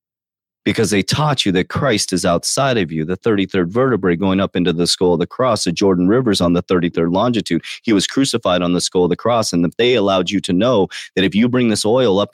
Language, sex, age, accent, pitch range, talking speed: English, male, 30-49, American, 85-105 Hz, 245 wpm